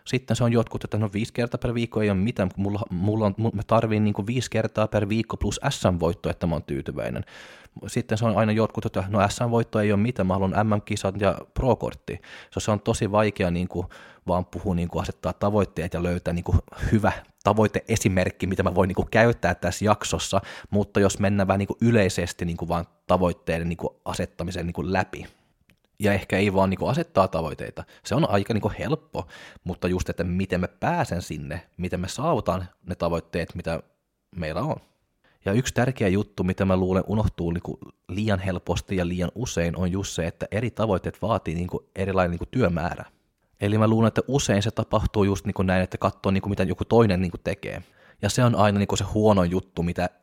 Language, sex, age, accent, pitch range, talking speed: Finnish, male, 20-39, native, 90-110 Hz, 180 wpm